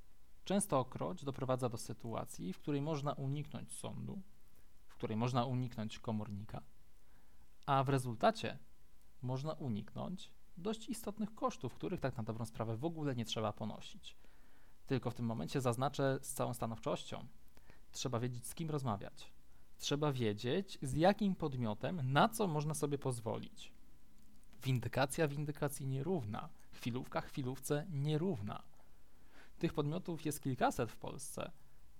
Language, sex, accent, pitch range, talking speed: Polish, male, native, 115-155 Hz, 130 wpm